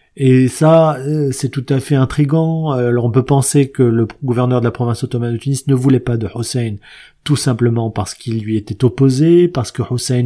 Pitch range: 120-150 Hz